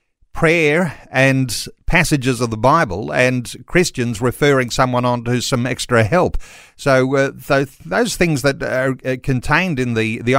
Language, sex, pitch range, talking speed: English, male, 115-145 Hz, 150 wpm